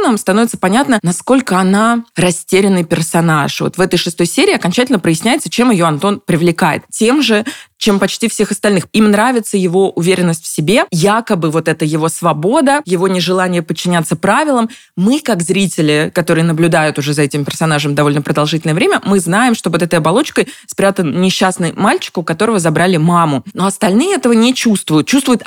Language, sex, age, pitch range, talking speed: Russian, female, 20-39, 170-215 Hz, 165 wpm